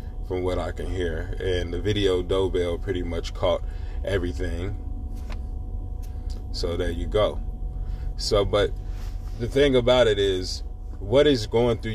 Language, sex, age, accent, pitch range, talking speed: English, male, 30-49, American, 90-105 Hz, 140 wpm